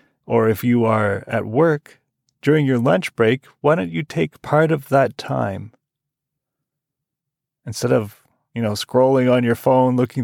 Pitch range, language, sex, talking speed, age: 115-150 Hz, English, male, 160 wpm, 30-49